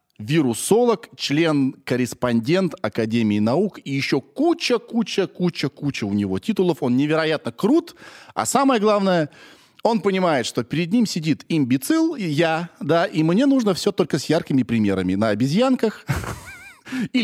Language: Russian